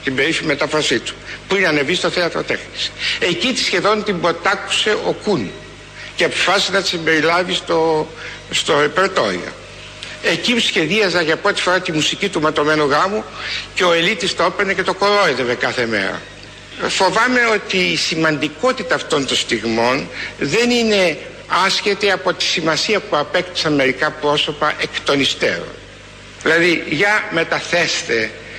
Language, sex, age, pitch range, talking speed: Greek, male, 60-79, 120-185 Hz, 140 wpm